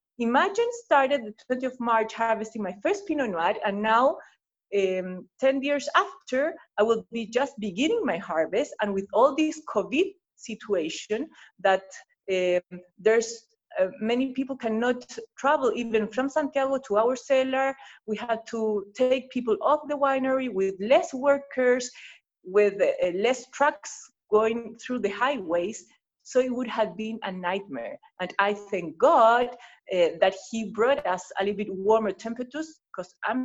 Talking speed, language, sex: 155 wpm, English, female